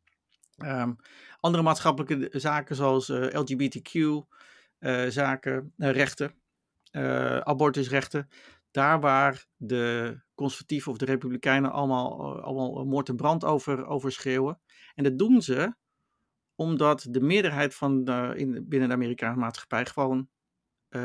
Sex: male